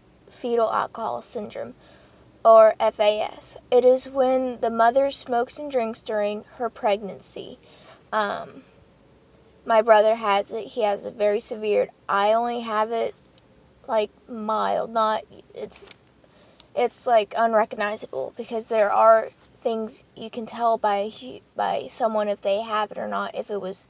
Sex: female